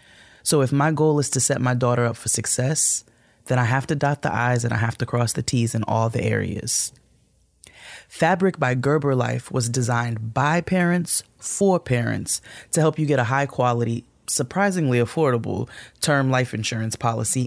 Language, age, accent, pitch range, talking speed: English, 20-39, American, 120-150 Hz, 180 wpm